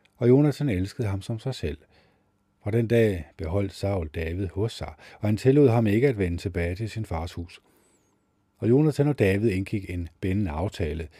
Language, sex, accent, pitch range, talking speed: Danish, male, native, 90-110 Hz, 190 wpm